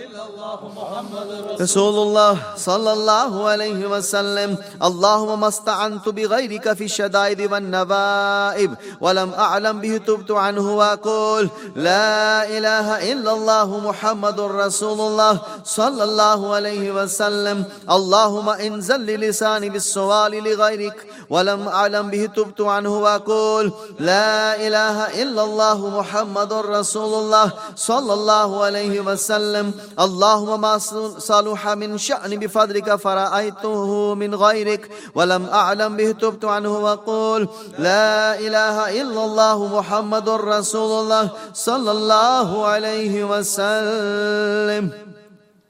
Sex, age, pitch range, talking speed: male, 30-49, 205-215 Hz, 105 wpm